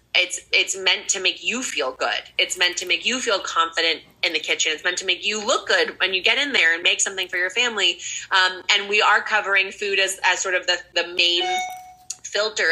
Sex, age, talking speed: female, 20-39, 235 wpm